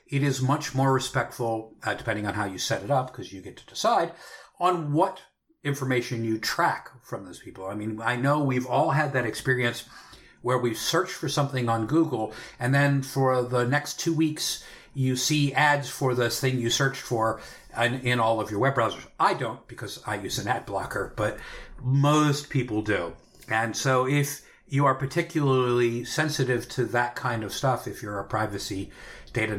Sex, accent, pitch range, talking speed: male, American, 110-140 Hz, 190 wpm